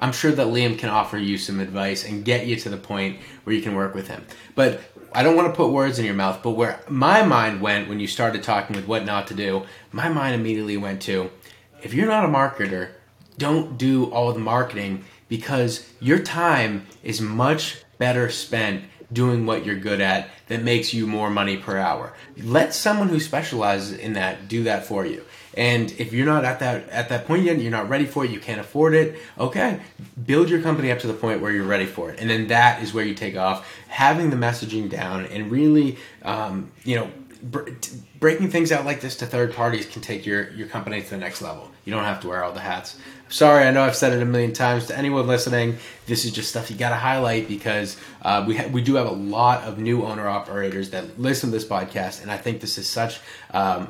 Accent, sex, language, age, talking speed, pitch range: American, male, English, 20-39, 230 wpm, 100-125 Hz